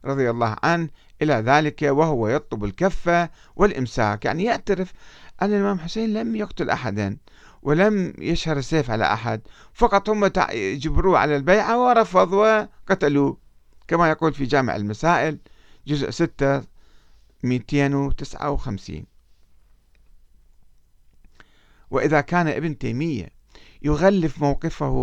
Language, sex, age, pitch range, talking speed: Arabic, male, 50-69, 110-170 Hz, 100 wpm